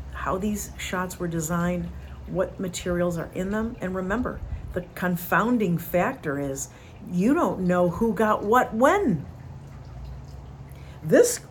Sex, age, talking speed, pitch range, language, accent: female, 50-69, 125 wpm, 120-205 Hz, English, American